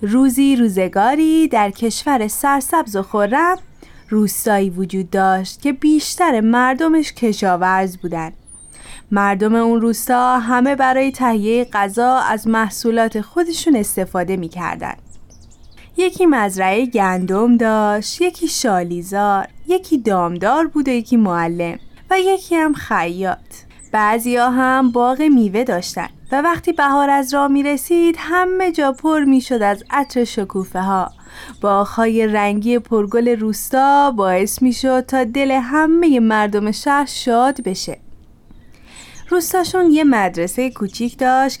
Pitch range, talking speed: 200-280 Hz, 125 wpm